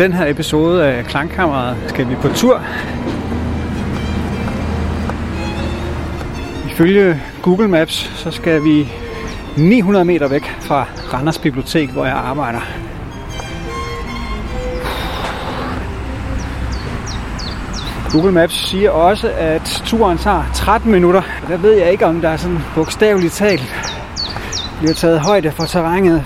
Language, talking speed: Danish, 110 wpm